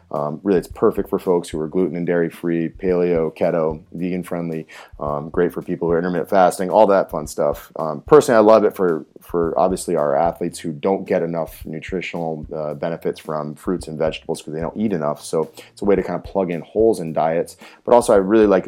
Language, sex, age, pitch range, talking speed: English, male, 30-49, 80-95 Hz, 220 wpm